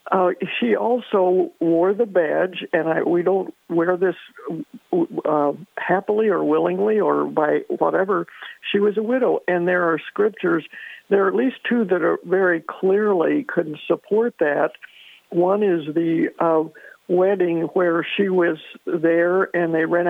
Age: 60-79